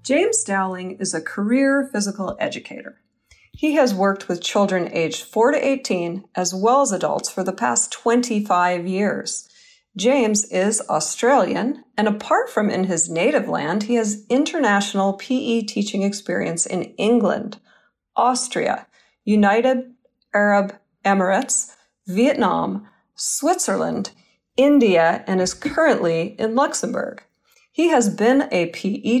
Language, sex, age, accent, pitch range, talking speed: English, female, 40-59, American, 190-255 Hz, 125 wpm